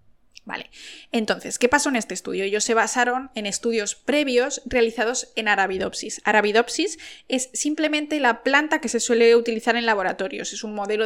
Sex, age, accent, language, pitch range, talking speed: female, 20-39, Spanish, Spanish, 215-260 Hz, 165 wpm